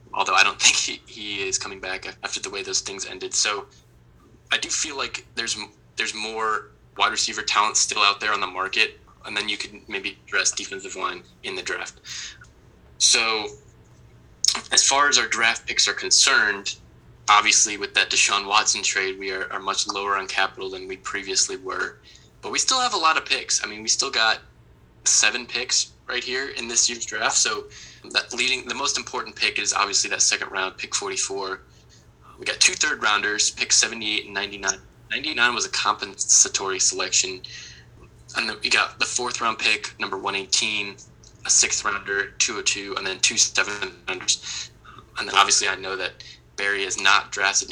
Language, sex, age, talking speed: English, male, 20-39, 180 wpm